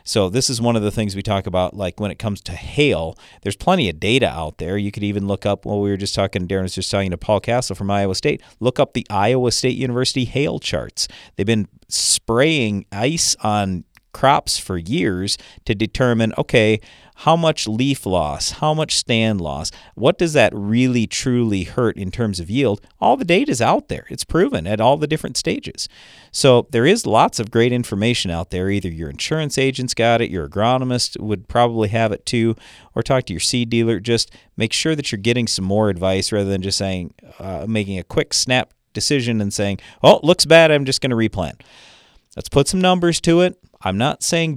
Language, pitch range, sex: English, 100-130 Hz, male